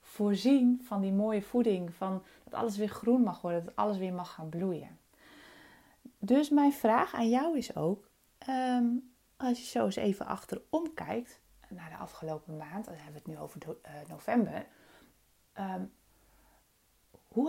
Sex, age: female, 20-39